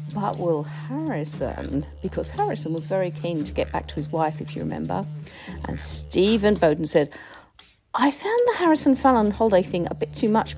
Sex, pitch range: female, 155-215 Hz